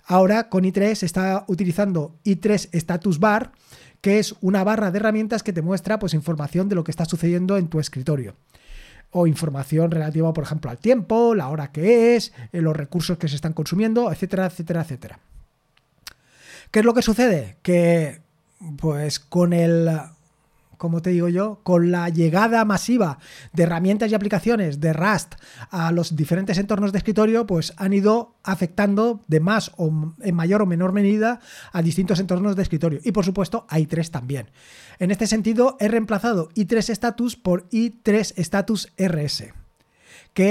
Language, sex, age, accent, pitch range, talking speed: Spanish, male, 30-49, Spanish, 165-215 Hz, 165 wpm